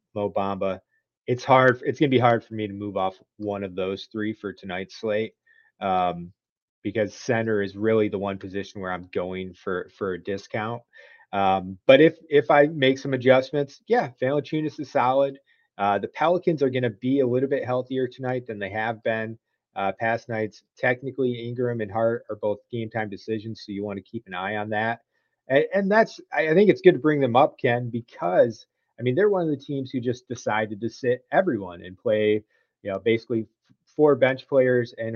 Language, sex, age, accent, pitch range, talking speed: English, male, 30-49, American, 105-130 Hz, 205 wpm